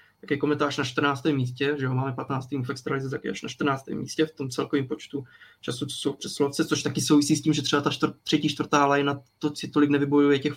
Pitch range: 140-155 Hz